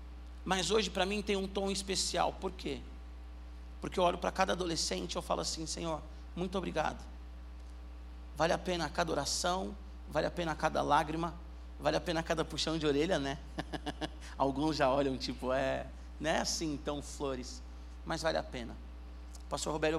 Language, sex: Portuguese, male